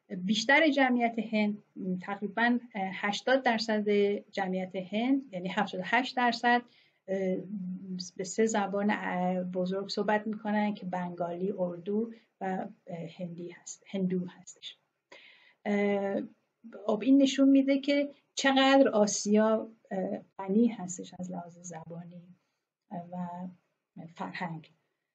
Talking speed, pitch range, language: 90 wpm, 185-235 Hz, Persian